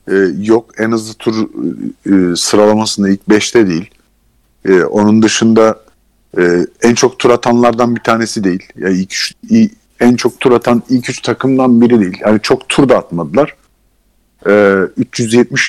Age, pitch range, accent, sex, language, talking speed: 50-69, 105-125 Hz, native, male, Turkish, 125 wpm